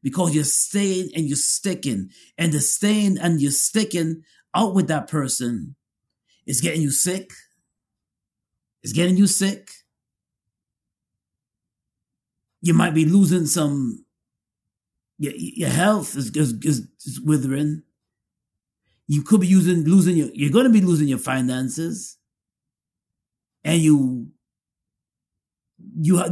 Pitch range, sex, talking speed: 140-190 Hz, male, 120 wpm